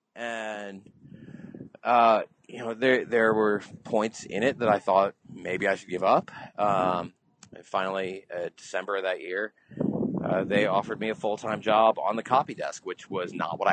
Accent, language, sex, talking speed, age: American, English, male, 180 wpm, 30-49